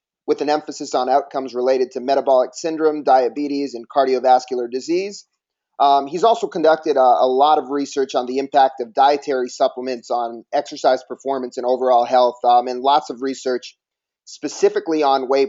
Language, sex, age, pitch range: English, male, 30-49, 125-145 Hz